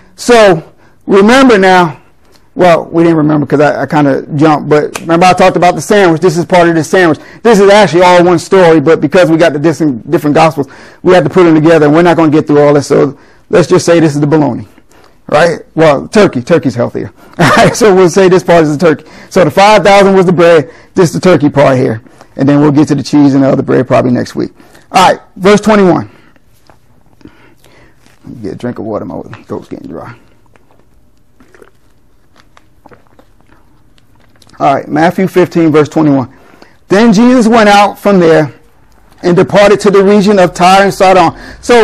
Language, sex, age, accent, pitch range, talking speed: English, male, 30-49, American, 160-215 Hz, 200 wpm